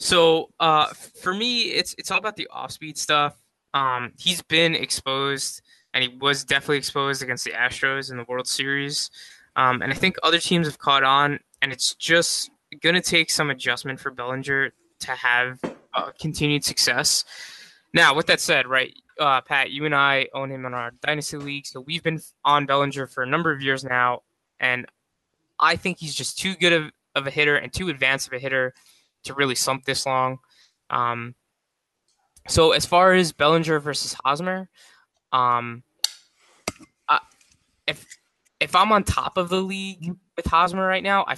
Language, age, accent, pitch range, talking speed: English, 20-39, American, 130-165 Hz, 180 wpm